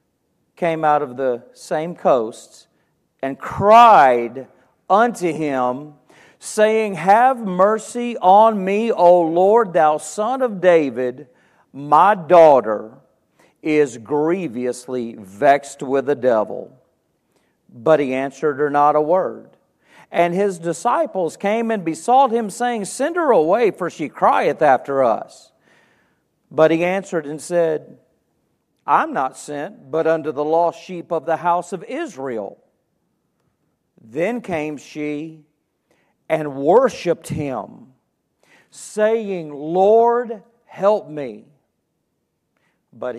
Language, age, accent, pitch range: English, 50-69, American, 140-195 Hz